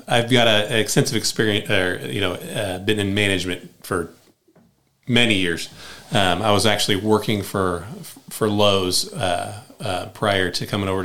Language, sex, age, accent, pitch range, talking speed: English, male, 30-49, American, 100-120 Hz, 160 wpm